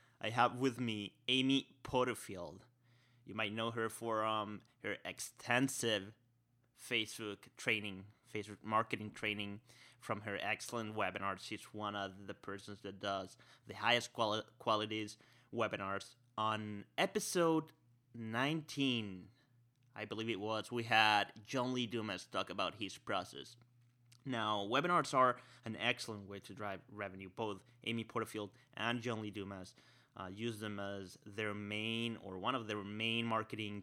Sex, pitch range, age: male, 105-120 Hz, 30-49